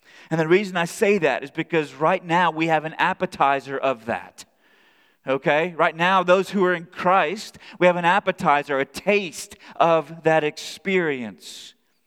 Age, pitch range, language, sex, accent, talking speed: 30-49, 155-205 Hz, English, male, American, 165 wpm